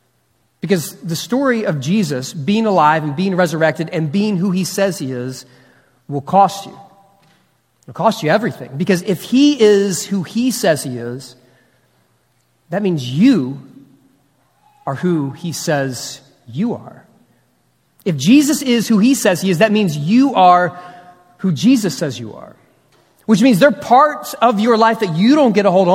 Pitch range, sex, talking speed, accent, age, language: 155-220 Hz, male, 170 wpm, American, 30-49, English